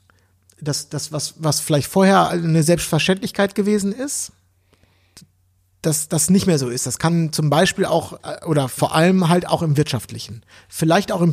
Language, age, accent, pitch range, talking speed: German, 50-69, German, 135-180 Hz, 165 wpm